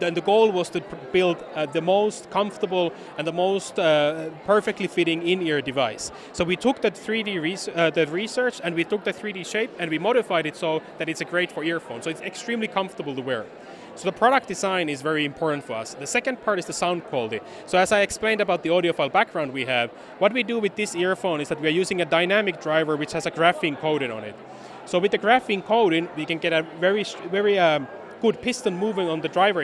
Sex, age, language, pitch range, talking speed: male, 30-49, English, 165-205 Hz, 235 wpm